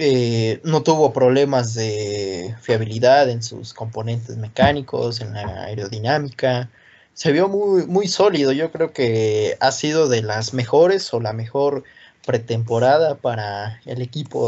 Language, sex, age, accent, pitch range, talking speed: Spanish, male, 20-39, Mexican, 115-145 Hz, 135 wpm